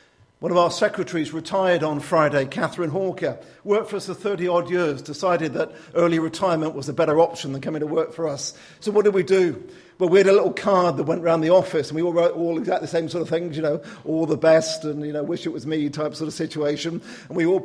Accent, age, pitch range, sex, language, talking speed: British, 50-69, 155-190 Hz, male, English, 255 wpm